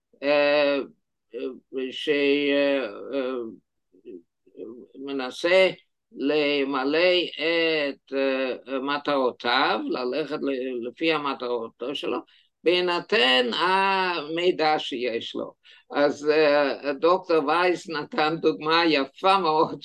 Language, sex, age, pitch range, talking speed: Hebrew, male, 50-69, 145-185 Hz, 55 wpm